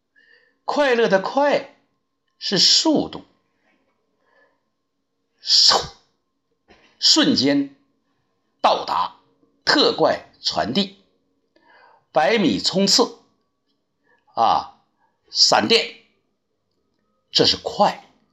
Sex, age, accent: male, 60-79, native